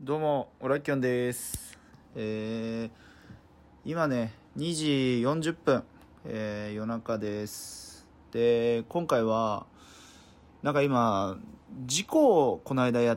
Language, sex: Japanese, male